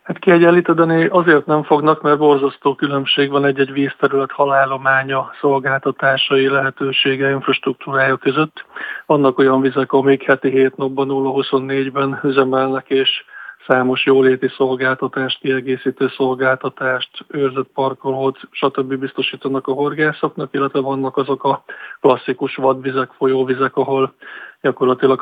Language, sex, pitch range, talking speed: Hungarian, male, 135-140 Hz, 105 wpm